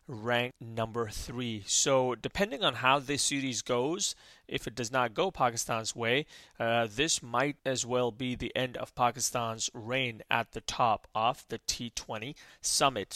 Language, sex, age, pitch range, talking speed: English, male, 30-49, 120-140 Hz, 160 wpm